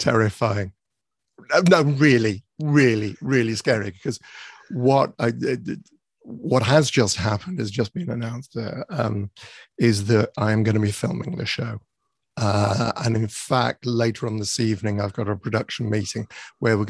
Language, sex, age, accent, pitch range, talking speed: English, male, 50-69, British, 105-130 Hz, 155 wpm